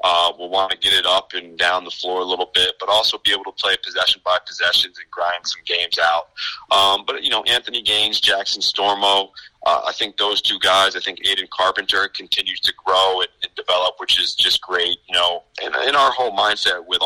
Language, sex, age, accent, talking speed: English, male, 30-49, American, 225 wpm